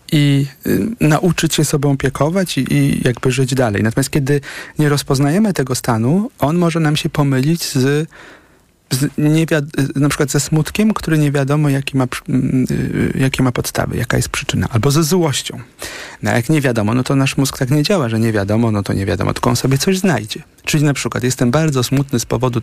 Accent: native